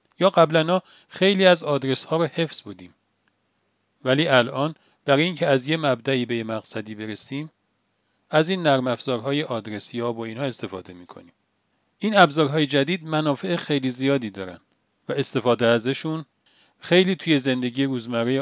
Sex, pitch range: male, 120-160 Hz